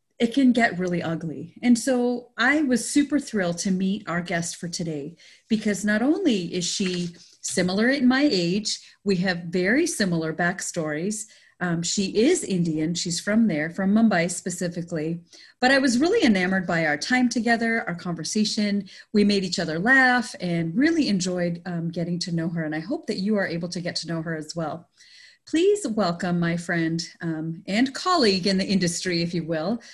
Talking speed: 185 wpm